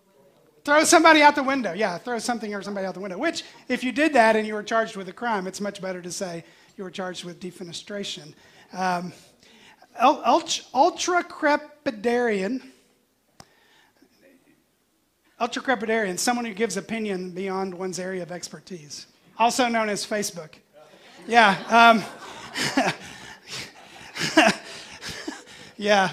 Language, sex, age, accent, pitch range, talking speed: English, male, 30-49, American, 180-235 Hz, 125 wpm